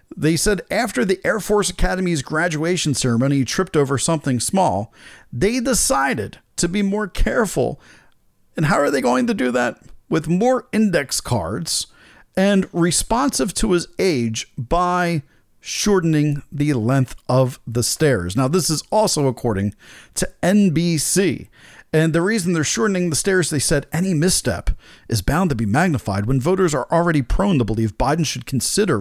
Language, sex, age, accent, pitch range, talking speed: English, male, 40-59, American, 135-185 Hz, 155 wpm